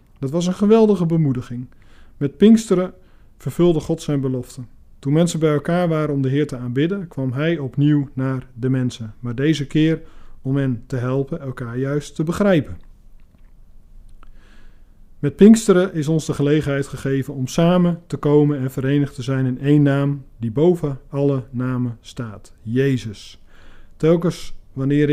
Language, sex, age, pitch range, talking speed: Dutch, male, 40-59, 125-160 Hz, 155 wpm